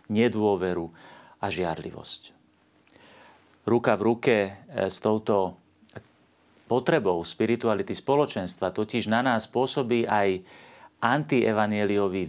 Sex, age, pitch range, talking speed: male, 40-59, 100-120 Hz, 85 wpm